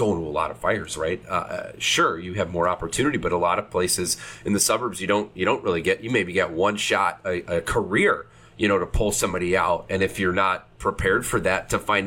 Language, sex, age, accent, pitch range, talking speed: English, male, 30-49, American, 90-110 Hz, 255 wpm